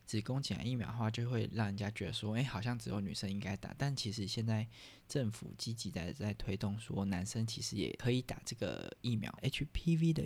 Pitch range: 105-130 Hz